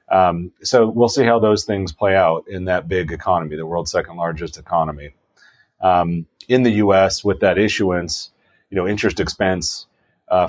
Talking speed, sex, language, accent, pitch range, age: 170 wpm, male, English, American, 85-100 Hz, 30-49